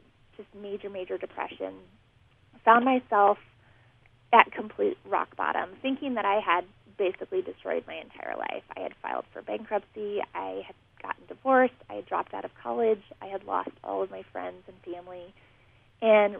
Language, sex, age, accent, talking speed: English, female, 20-39, American, 160 wpm